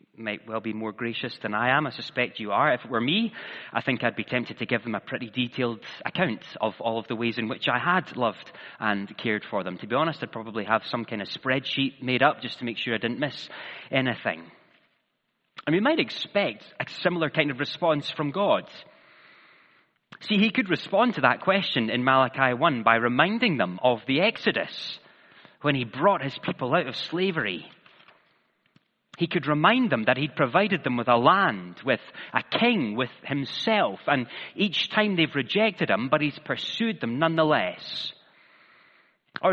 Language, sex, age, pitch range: English, male, 30-49, 120-175 Hz